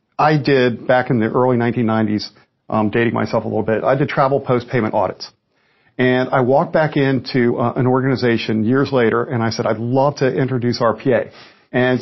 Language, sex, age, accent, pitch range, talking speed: English, male, 50-69, American, 120-140 Hz, 185 wpm